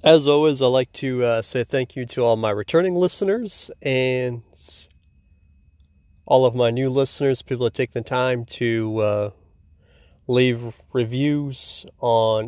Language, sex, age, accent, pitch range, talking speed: English, male, 30-49, American, 105-135 Hz, 145 wpm